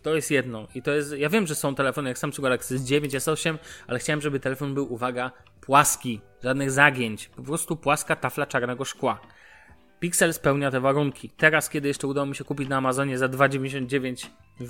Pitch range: 125-150 Hz